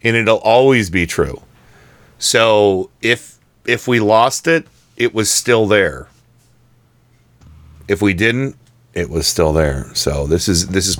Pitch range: 95-120 Hz